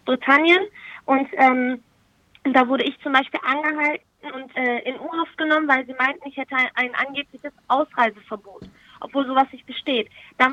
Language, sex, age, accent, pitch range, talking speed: German, female, 20-39, German, 245-300 Hz, 155 wpm